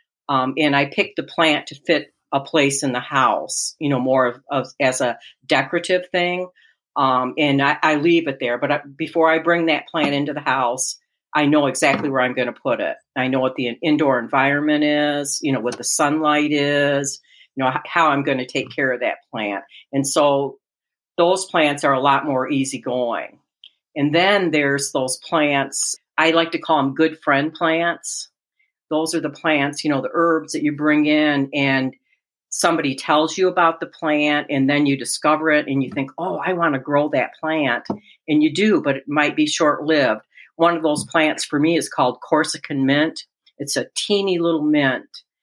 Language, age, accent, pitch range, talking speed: English, 50-69, American, 140-165 Hz, 200 wpm